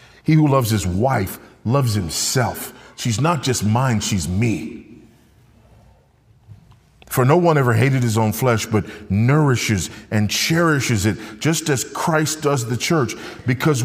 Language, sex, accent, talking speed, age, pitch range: English, male, American, 145 wpm, 40-59, 115-190 Hz